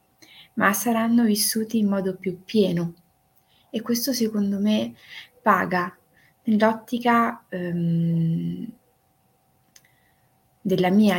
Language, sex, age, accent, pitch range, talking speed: Italian, female, 20-39, native, 175-215 Hz, 80 wpm